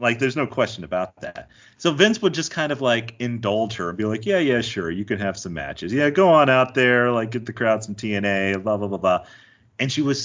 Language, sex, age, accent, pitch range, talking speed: English, male, 30-49, American, 105-145 Hz, 260 wpm